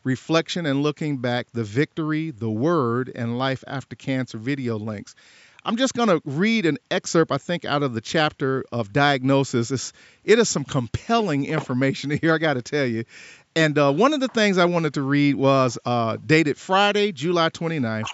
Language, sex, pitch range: English, male, 125-175 Hz